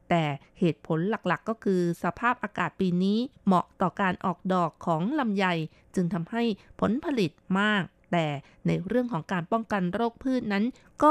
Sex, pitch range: female, 175-215 Hz